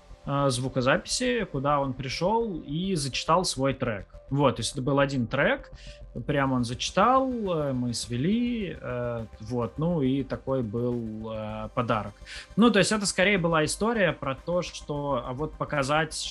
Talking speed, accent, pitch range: 145 wpm, native, 120-150 Hz